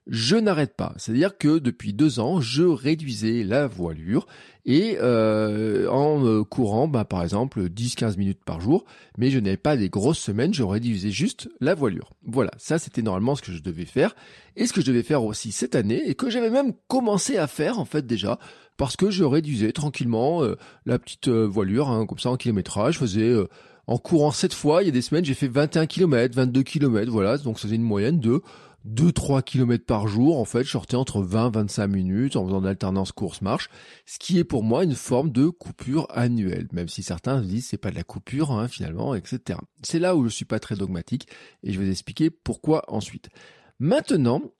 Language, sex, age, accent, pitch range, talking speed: French, male, 40-59, French, 105-150 Hz, 215 wpm